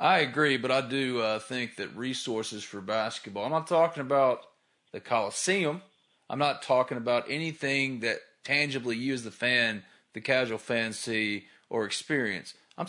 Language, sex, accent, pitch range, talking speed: English, male, American, 115-140 Hz, 160 wpm